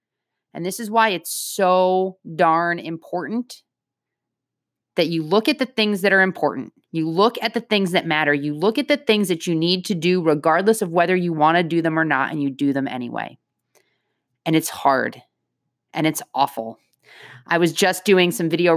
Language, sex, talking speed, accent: English, female, 195 wpm, American